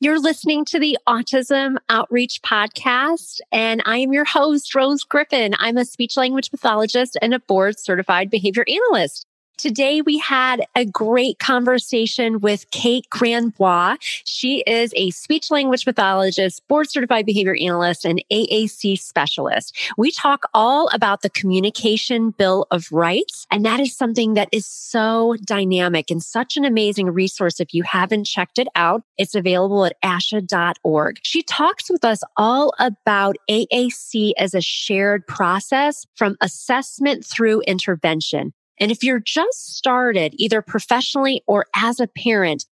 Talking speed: 140 wpm